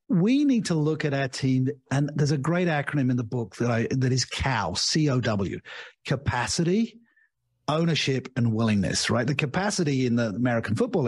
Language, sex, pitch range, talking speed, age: English, male, 125-170 Hz, 185 wpm, 50-69